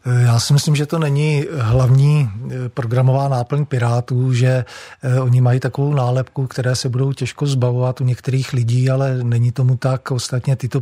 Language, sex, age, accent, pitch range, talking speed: Czech, male, 40-59, native, 125-135 Hz, 160 wpm